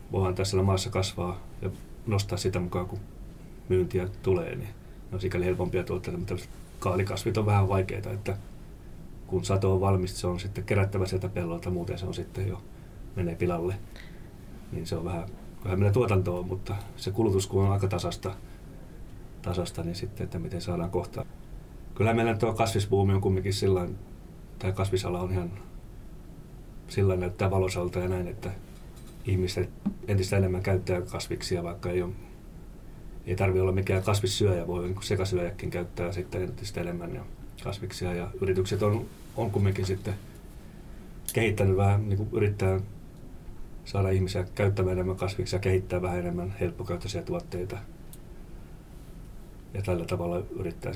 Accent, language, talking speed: native, Finnish, 140 wpm